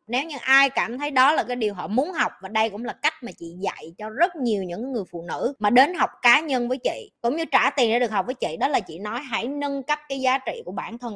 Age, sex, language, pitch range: 20-39, female, Vietnamese, 205-265 Hz